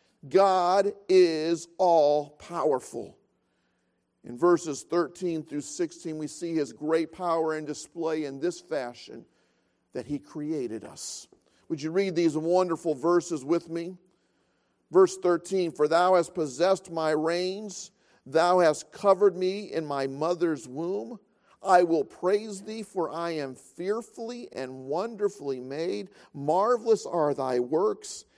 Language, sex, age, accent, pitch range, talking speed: English, male, 50-69, American, 150-195 Hz, 130 wpm